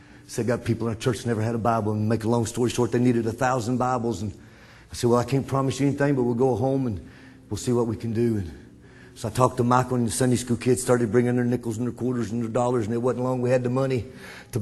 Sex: male